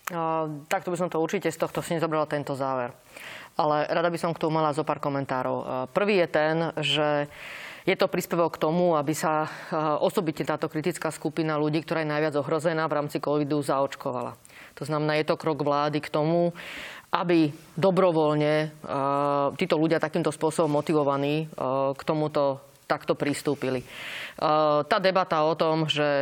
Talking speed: 170 wpm